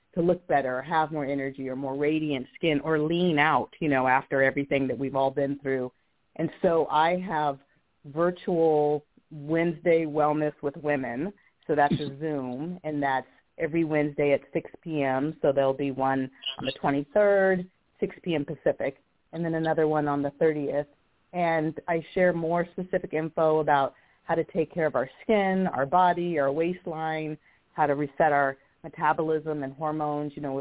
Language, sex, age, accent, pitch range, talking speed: English, female, 30-49, American, 140-160 Hz, 170 wpm